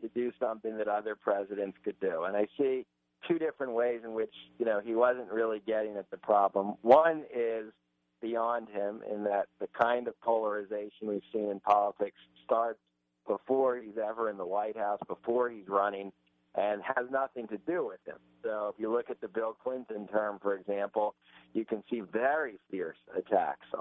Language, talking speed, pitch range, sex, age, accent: English, 185 wpm, 100-120 Hz, male, 50-69, American